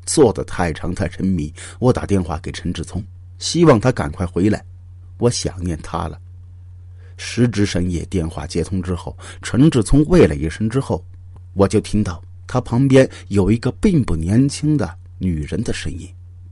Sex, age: male, 50-69